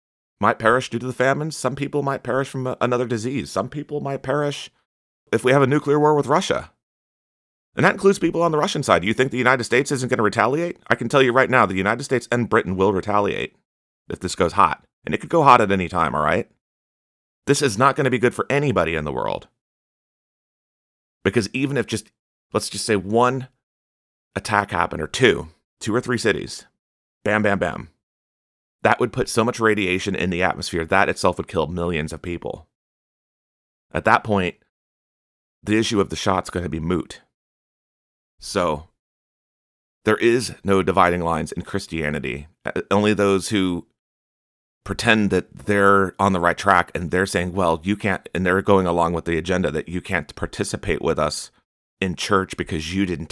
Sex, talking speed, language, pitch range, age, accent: male, 190 wpm, English, 85-125 Hz, 30-49, American